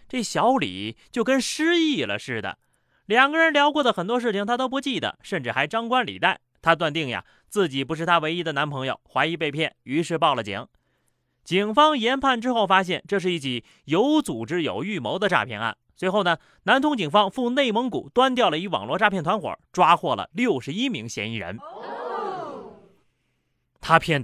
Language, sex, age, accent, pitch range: Chinese, male, 30-49, native, 140-230 Hz